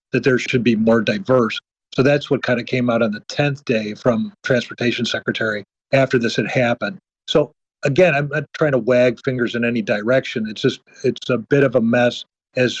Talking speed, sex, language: 205 wpm, male, English